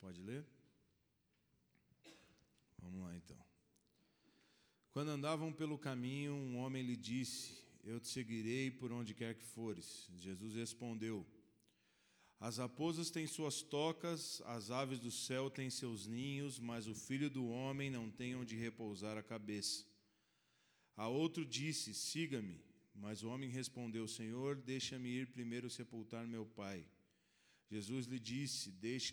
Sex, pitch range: male, 110-130 Hz